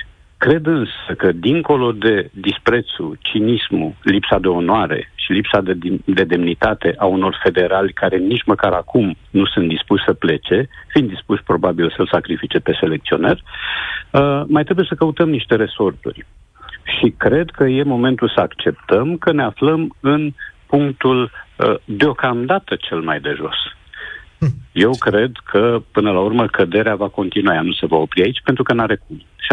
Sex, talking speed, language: male, 155 wpm, Romanian